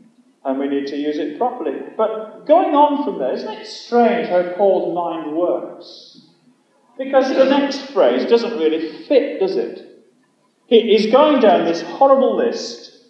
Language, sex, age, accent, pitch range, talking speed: English, male, 40-59, British, 200-265 Hz, 155 wpm